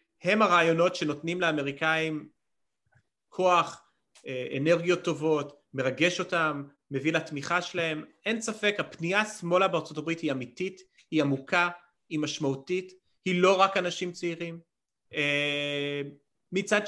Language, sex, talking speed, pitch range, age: Hebrew, male, 105 wpm, 145-175 Hz, 30-49